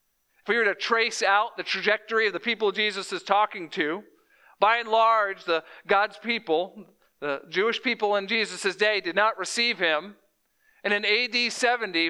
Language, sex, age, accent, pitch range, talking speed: English, male, 50-69, American, 180-230 Hz, 175 wpm